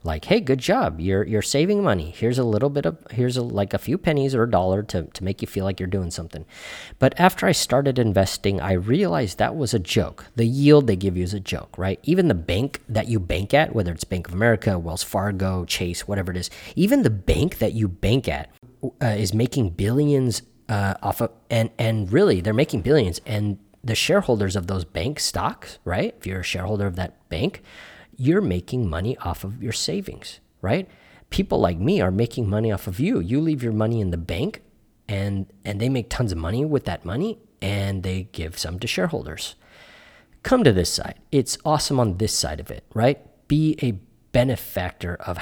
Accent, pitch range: American, 95-125 Hz